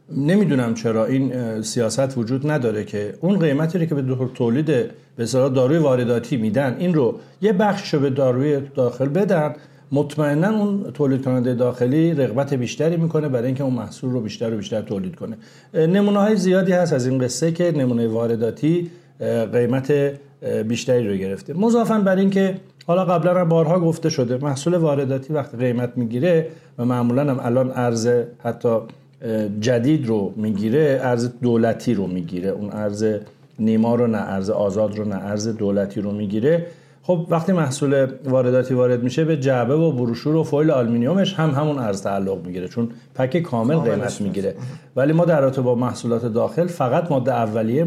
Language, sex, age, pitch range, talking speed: Persian, male, 50-69, 115-155 Hz, 160 wpm